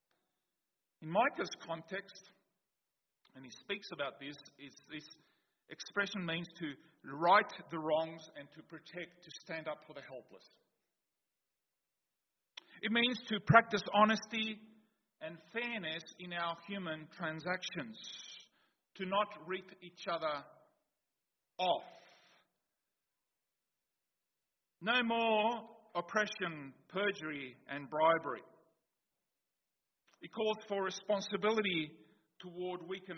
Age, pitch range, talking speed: 50-69, 155-205 Hz, 100 wpm